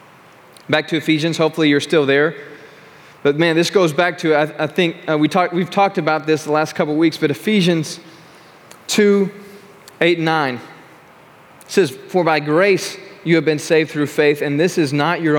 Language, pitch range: English, 155-185 Hz